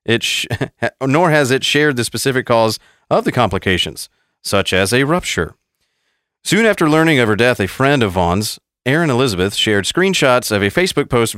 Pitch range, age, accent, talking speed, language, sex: 105-145 Hz, 40-59, American, 180 wpm, English, male